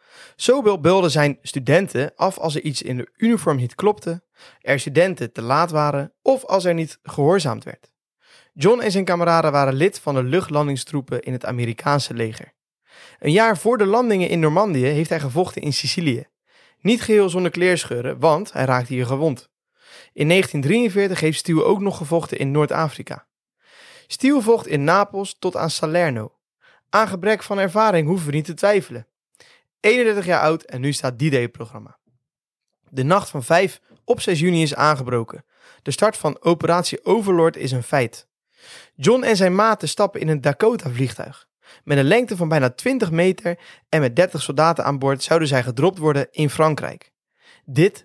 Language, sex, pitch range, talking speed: Dutch, male, 140-195 Hz, 165 wpm